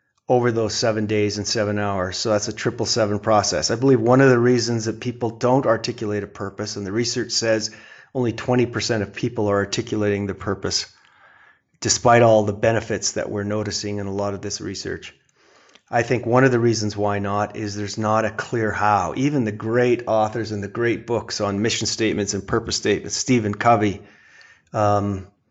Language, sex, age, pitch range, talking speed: English, male, 30-49, 105-120 Hz, 195 wpm